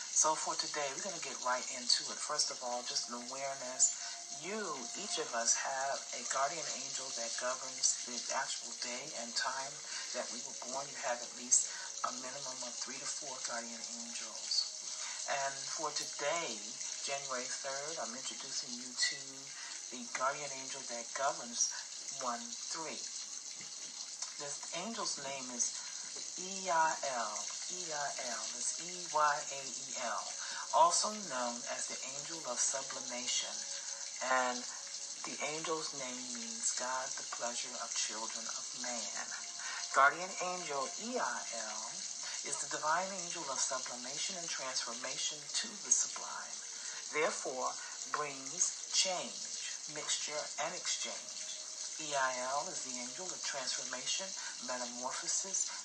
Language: English